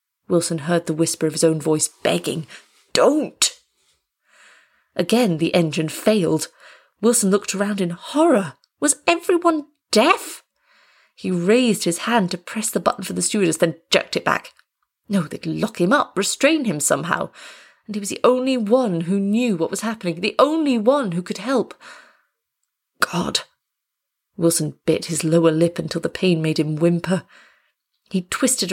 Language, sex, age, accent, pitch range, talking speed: English, female, 30-49, British, 170-235 Hz, 160 wpm